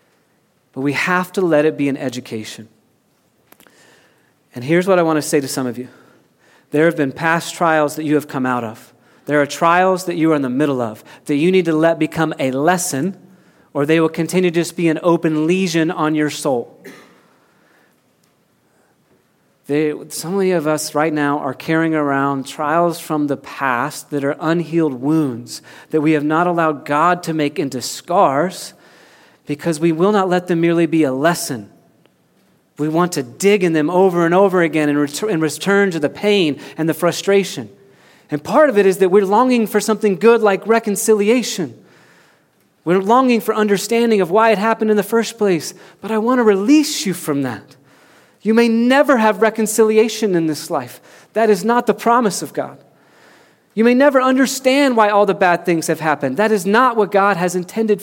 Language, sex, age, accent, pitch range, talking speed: English, male, 40-59, American, 150-205 Hz, 190 wpm